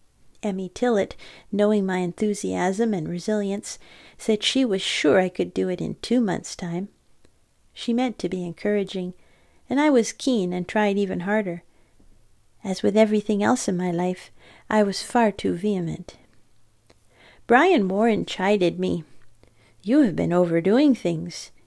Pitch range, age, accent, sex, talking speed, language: 180-220 Hz, 40-59, American, female, 145 wpm, English